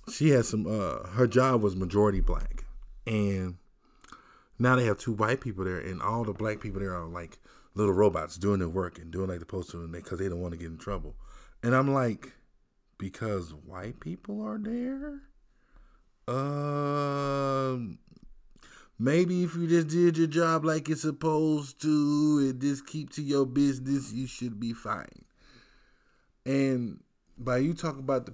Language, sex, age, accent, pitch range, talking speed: English, male, 20-39, American, 100-140 Hz, 170 wpm